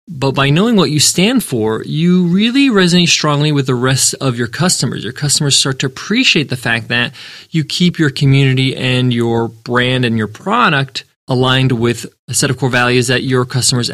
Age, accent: 20-39, American